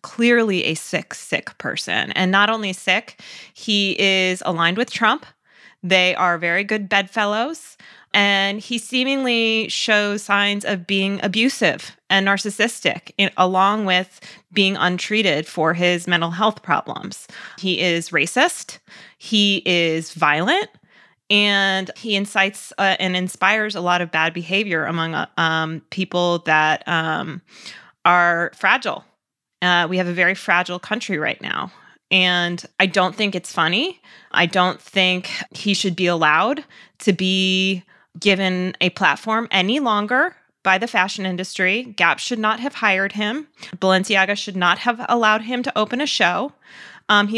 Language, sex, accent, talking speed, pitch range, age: English, female, American, 145 wpm, 180-220 Hz, 20-39